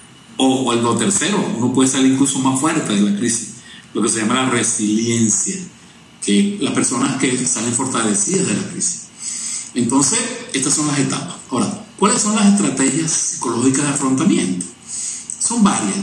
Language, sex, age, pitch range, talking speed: Spanish, male, 50-69, 120-170 Hz, 160 wpm